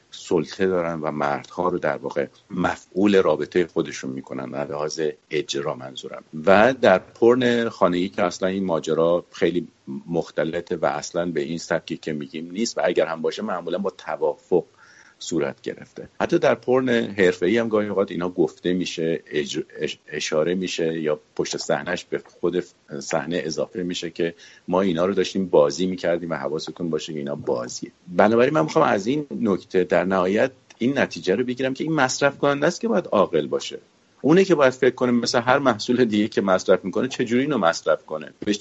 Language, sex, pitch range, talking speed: English, male, 85-130 Hz, 175 wpm